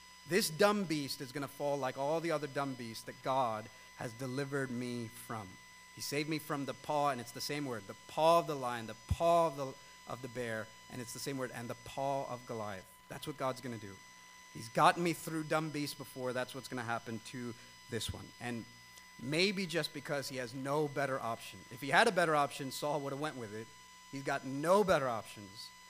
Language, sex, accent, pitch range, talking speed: English, male, American, 125-165 Hz, 230 wpm